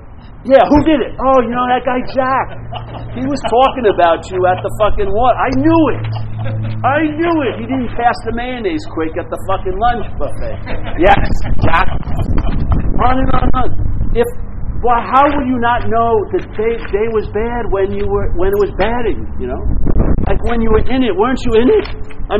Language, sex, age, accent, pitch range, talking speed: English, male, 50-69, American, 205-280 Hz, 205 wpm